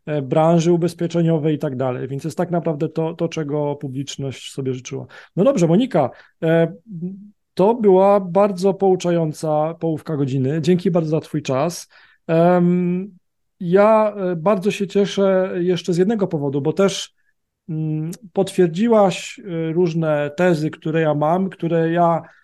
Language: Polish